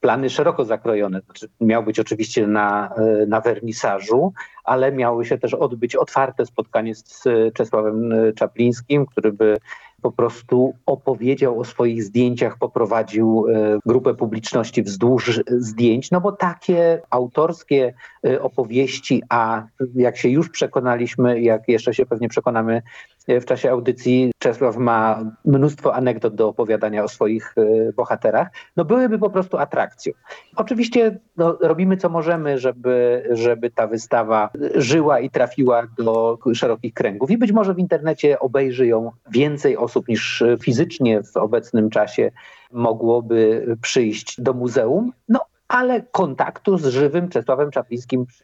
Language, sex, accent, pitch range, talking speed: Polish, male, native, 115-145 Hz, 130 wpm